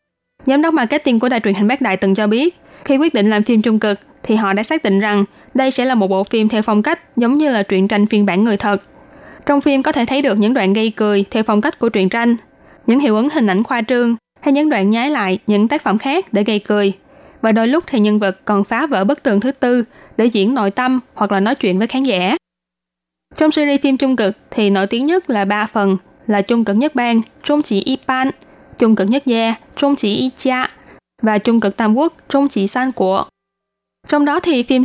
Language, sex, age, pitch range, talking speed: Vietnamese, female, 20-39, 205-265 Hz, 235 wpm